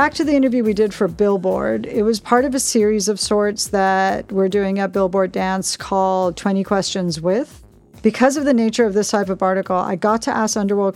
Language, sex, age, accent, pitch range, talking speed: English, female, 40-59, American, 190-225 Hz, 220 wpm